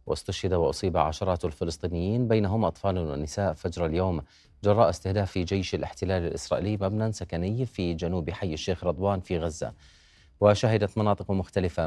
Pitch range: 85-100 Hz